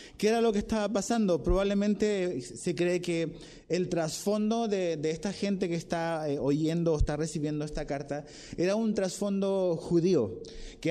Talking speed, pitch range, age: 160 wpm, 160-195 Hz, 30-49